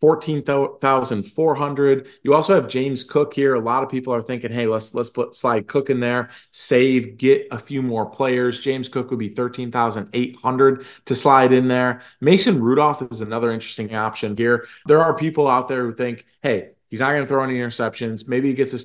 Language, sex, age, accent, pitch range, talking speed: English, male, 30-49, American, 110-135 Hz, 195 wpm